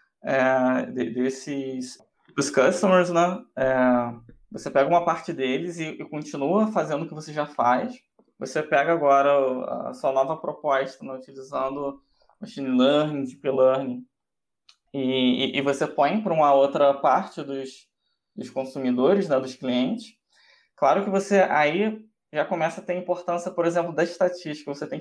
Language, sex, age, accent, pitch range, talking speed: Portuguese, male, 20-39, Brazilian, 135-175 Hz, 150 wpm